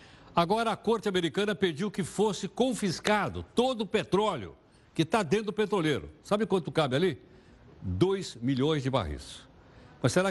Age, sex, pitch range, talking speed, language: 60-79, male, 125-170 Hz, 150 wpm, Portuguese